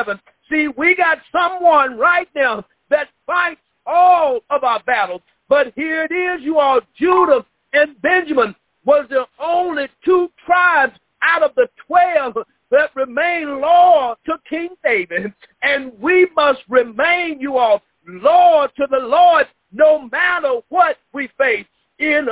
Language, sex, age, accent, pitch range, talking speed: English, male, 50-69, American, 280-350 Hz, 140 wpm